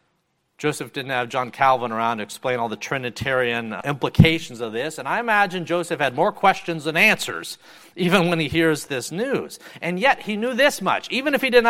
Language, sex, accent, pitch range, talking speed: English, male, American, 155-225 Hz, 200 wpm